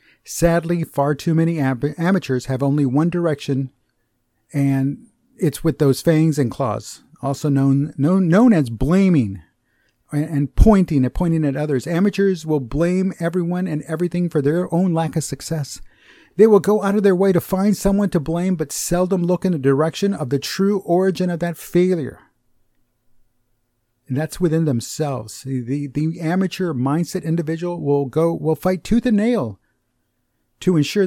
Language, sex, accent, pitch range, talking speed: English, male, American, 140-185 Hz, 160 wpm